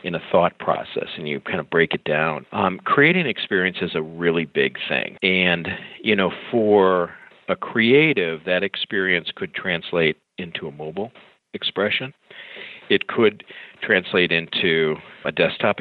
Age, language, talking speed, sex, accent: 50-69, English, 150 wpm, male, American